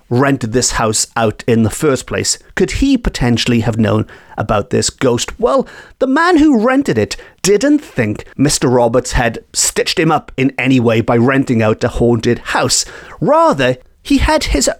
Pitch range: 120-170 Hz